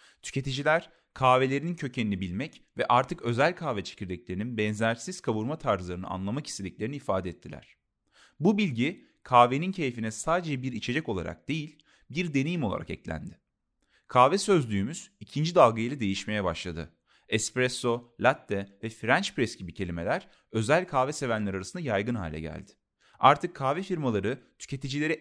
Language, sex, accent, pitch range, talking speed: Turkish, male, native, 100-160 Hz, 125 wpm